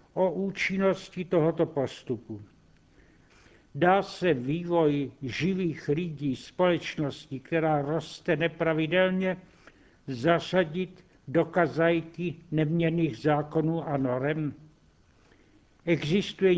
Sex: male